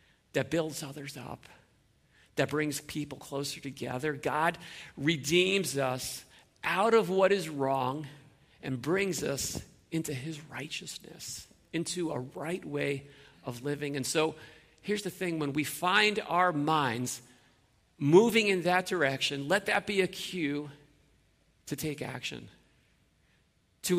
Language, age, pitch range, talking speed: English, 50-69, 130-175 Hz, 130 wpm